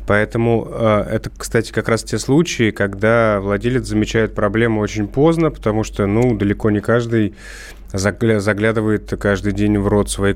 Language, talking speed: Russian, 145 wpm